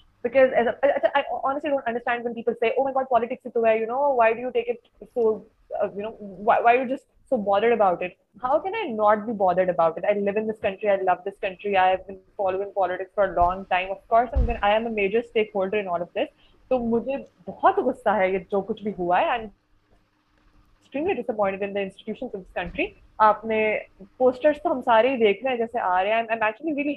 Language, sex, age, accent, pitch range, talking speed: English, female, 20-39, Indian, 200-255 Hz, 200 wpm